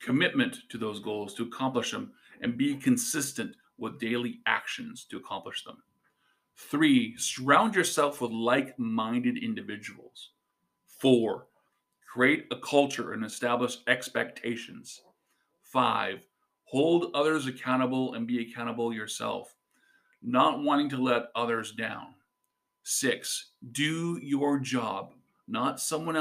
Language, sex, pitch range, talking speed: English, male, 120-165 Hz, 110 wpm